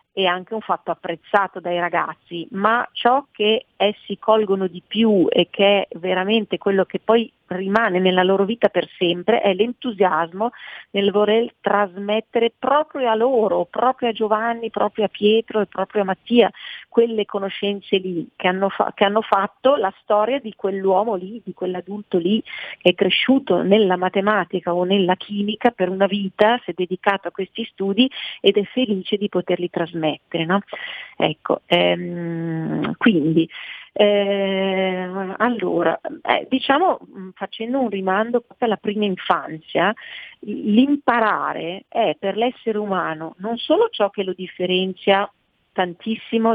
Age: 40-59